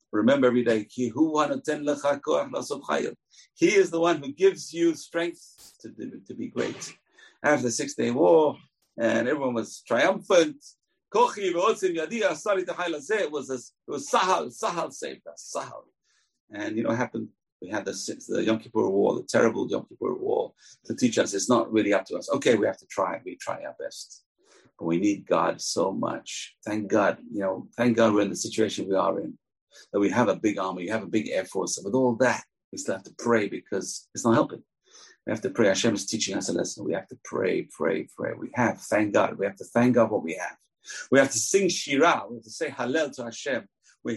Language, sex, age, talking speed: English, male, 50-69, 205 wpm